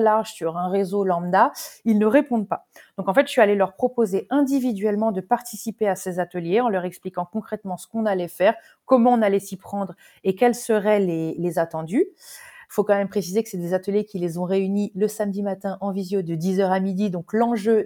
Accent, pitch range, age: French, 195-250 Hz, 30-49